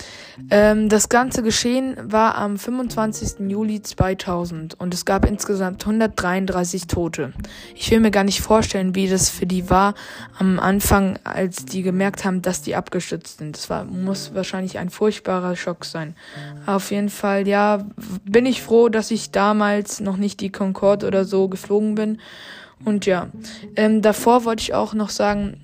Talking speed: 160 wpm